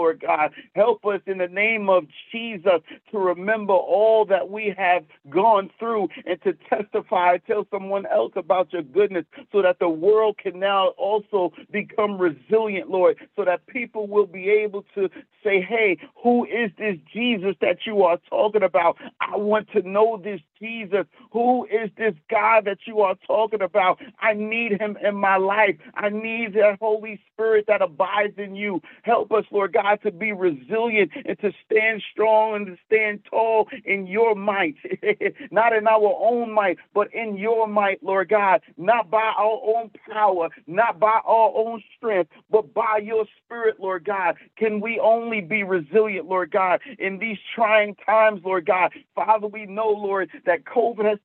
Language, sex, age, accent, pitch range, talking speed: English, male, 50-69, American, 195-225 Hz, 175 wpm